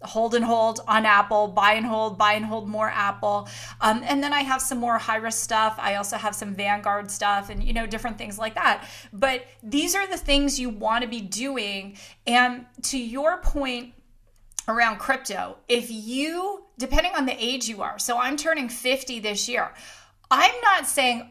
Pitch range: 220-260 Hz